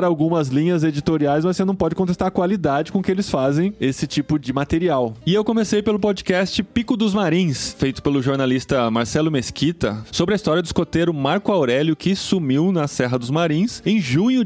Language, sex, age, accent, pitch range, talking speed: Portuguese, male, 20-39, Brazilian, 130-180 Hz, 190 wpm